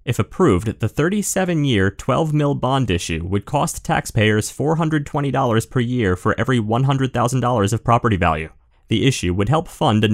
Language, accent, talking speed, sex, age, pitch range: English, American, 150 wpm, male, 30-49, 100-135 Hz